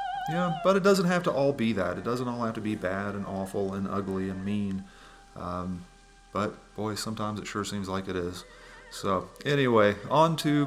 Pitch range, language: 100-125 Hz, English